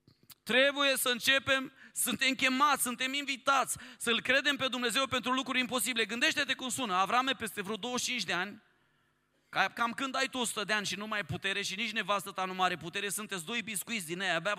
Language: Romanian